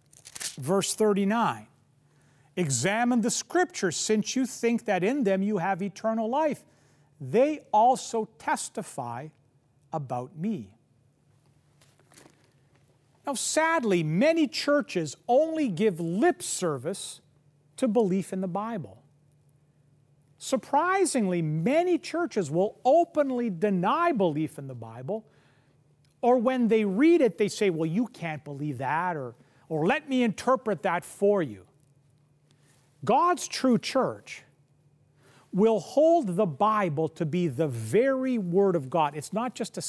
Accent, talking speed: American, 120 wpm